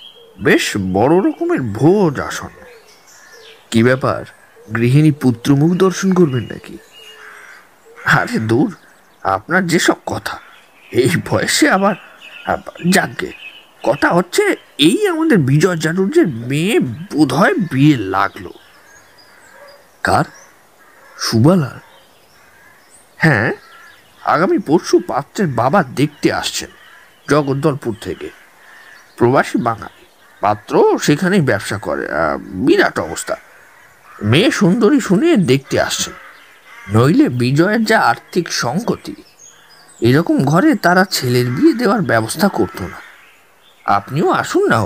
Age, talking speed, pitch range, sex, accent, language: 50-69, 65 wpm, 125-205 Hz, male, native, Bengali